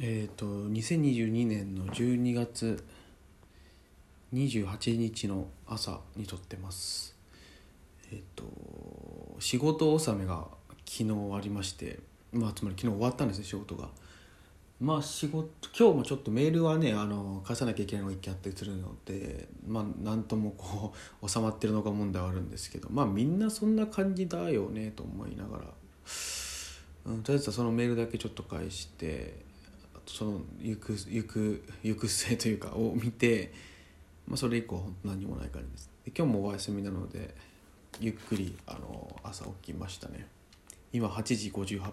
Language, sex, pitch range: Japanese, male, 90-115 Hz